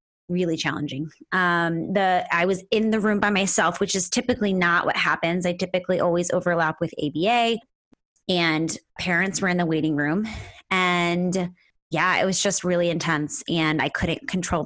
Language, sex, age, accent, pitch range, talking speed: English, female, 20-39, American, 170-215 Hz, 170 wpm